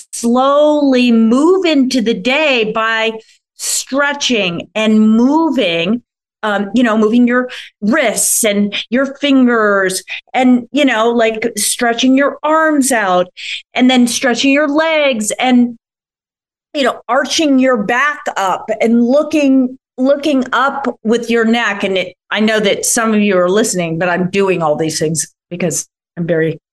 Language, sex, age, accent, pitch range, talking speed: English, female, 30-49, American, 210-275 Hz, 140 wpm